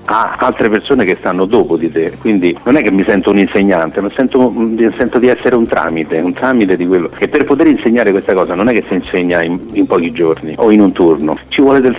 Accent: native